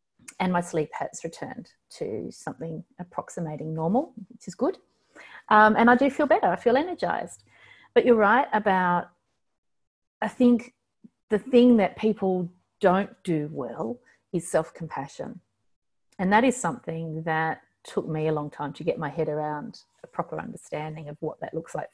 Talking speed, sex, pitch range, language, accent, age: 160 wpm, female, 160-220 Hz, English, Australian, 30-49